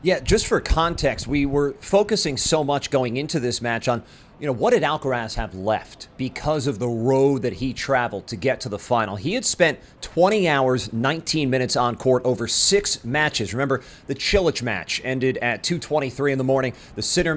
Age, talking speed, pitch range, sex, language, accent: 40-59, 195 wpm, 120-155 Hz, male, English, American